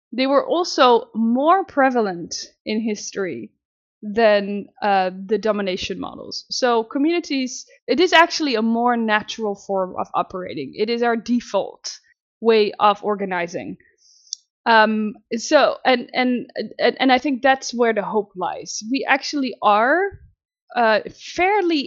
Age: 20-39